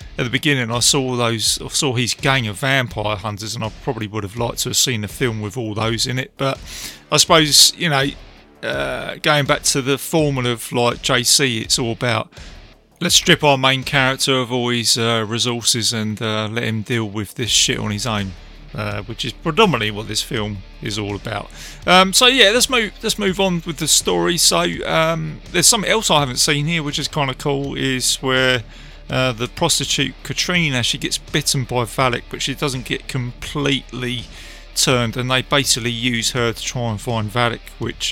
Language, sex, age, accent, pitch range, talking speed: English, male, 30-49, British, 115-150 Hz, 205 wpm